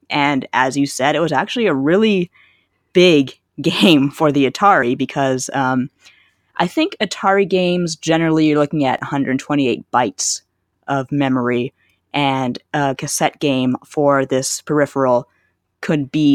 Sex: female